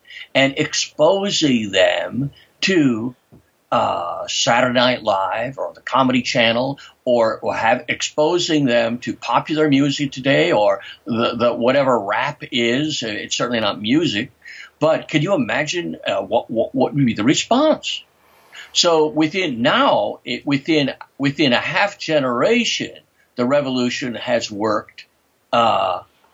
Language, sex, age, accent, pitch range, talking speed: English, male, 60-79, American, 135-200 Hz, 130 wpm